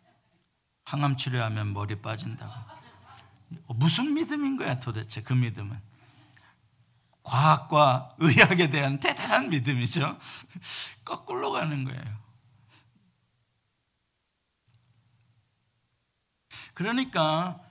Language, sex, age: Korean, male, 50-69